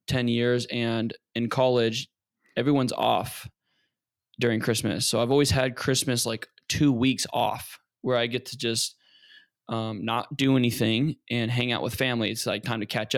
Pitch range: 115-135 Hz